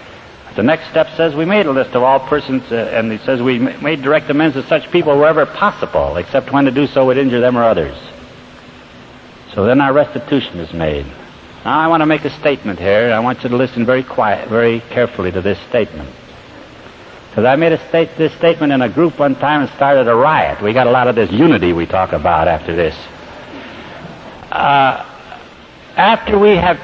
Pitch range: 120-165 Hz